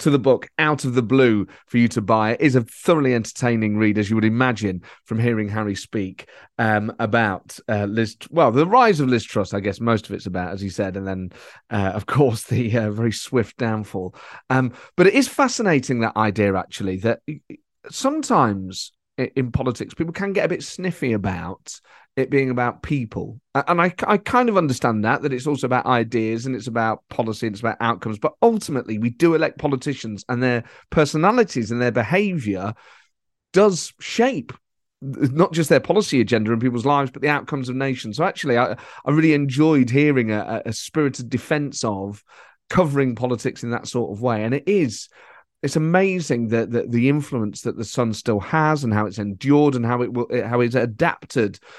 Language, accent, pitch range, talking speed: English, British, 110-145 Hz, 195 wpm